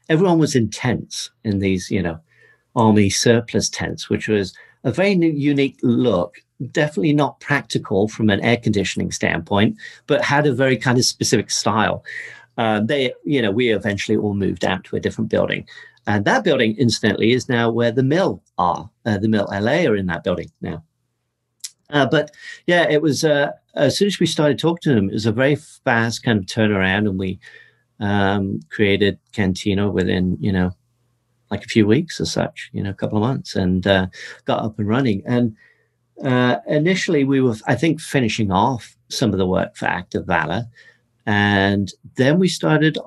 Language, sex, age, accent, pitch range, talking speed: English, male, 40-59, British, 105-145 Hz, 185 wpm